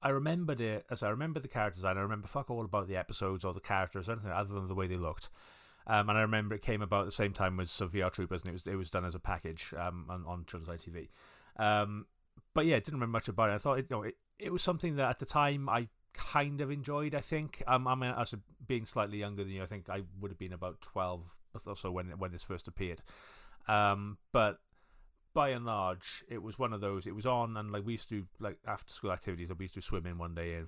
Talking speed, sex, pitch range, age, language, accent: 270 wpm, male, 90-115 Hz, 30-49, English, British